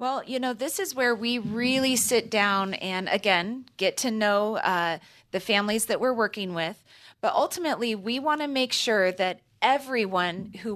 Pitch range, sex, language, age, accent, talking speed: 185-230 Hz, female, English, 30-49, American, 180 wpm